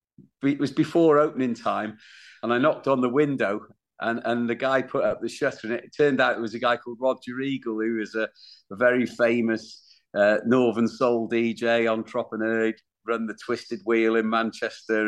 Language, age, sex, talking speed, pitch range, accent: English, 40-59, male, 190 wpm, 115-150 Hz, British